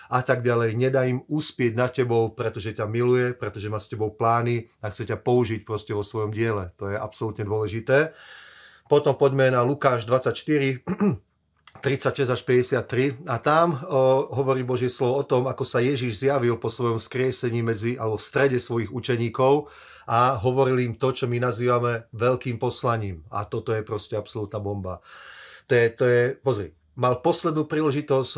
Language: Slovak